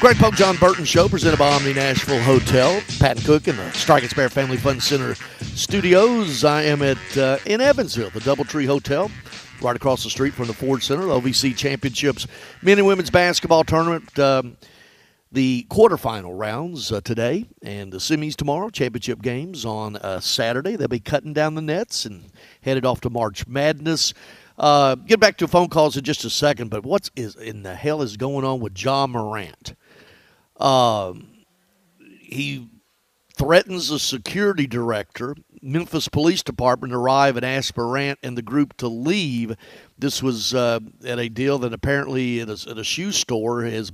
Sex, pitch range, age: male, 120-160 Hz, 50-69